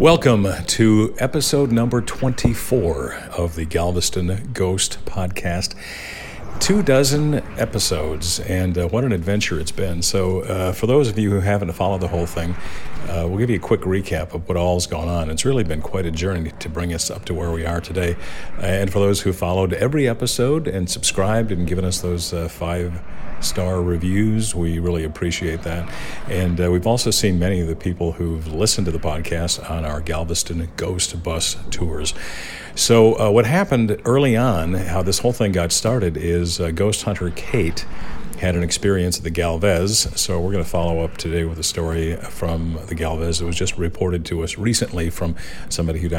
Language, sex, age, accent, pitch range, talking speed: English, male, 50-69, American, 85-100 Hz, 190 wpm